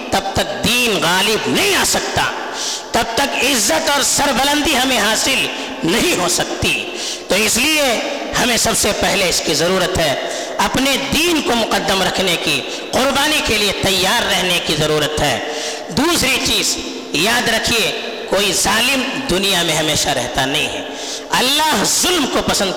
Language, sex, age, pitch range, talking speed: Urdu, female, 50-69, 220-305 Hz, 155 wpm